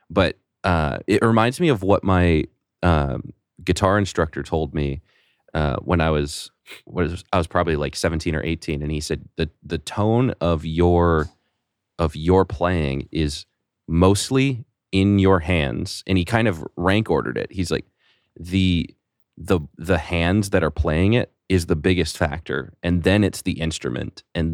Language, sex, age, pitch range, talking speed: English, male, 30-49, 80-95 Hz, 170 wpm